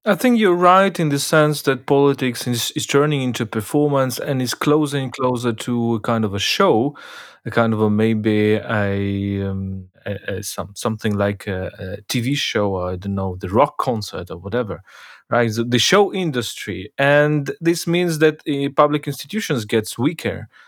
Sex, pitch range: male, 110-140 Hz